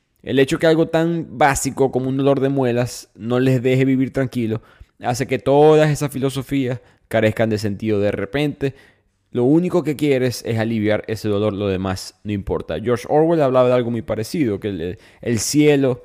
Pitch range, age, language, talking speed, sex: 105-130 Hz, 20-39, Spanish, 180 wpm, male